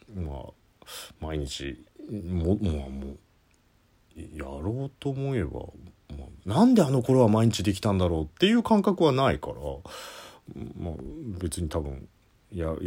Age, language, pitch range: 40-59, Japanese, 80-110 Hz